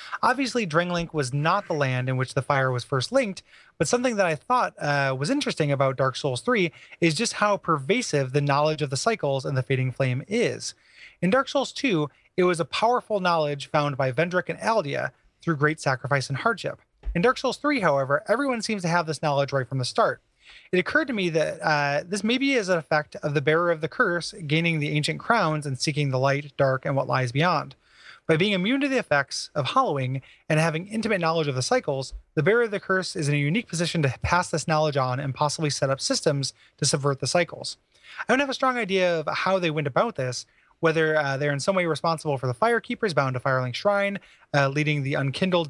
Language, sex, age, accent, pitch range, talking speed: English, male, 30-49, American, 140-190 Hz, 225 wpm